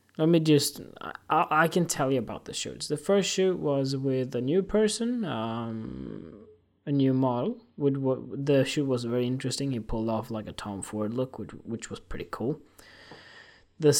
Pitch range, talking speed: 110-150 Hz, 185 wpm